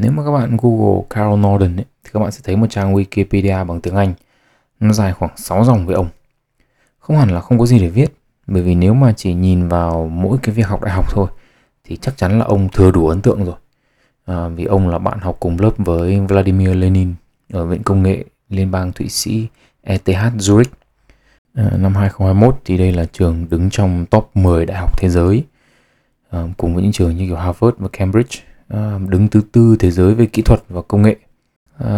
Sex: male